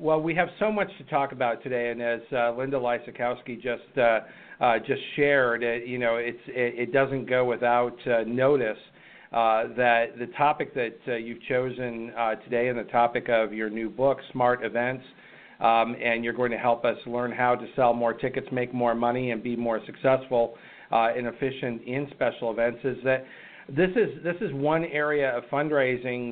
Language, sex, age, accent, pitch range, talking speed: English, male, 50-69, American, 115-135 Hz, 190 wpm